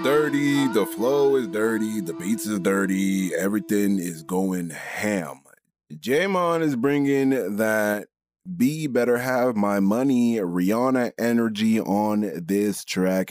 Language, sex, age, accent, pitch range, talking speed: English, male, 20-39, American, 85-105 Hz, 125 wpm